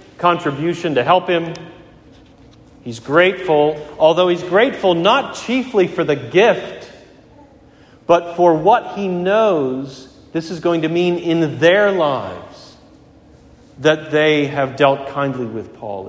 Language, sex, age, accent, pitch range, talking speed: English, male, 40-59, American, 130-175 Hz, 125 wpm